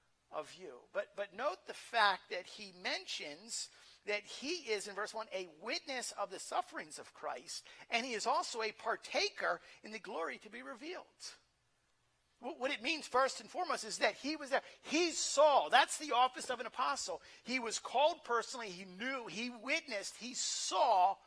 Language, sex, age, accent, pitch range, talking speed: English, male, 50-69, American, 205-290 Hz, 180 wpm